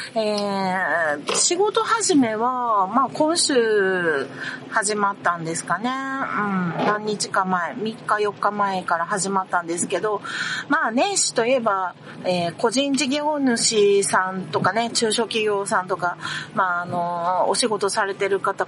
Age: 40-59